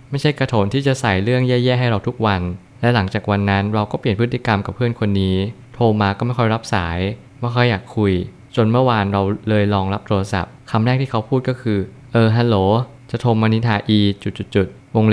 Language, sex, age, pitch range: Thai, male, 20-39, 100-125 Hz